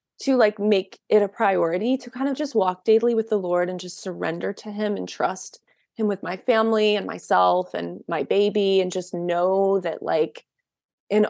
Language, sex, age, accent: English, female, 20-39, American